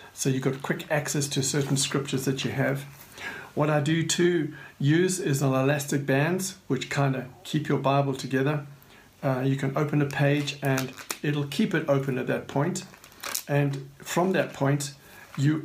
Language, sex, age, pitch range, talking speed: English, male, 60-79, 130-150 Hz, 175 wpm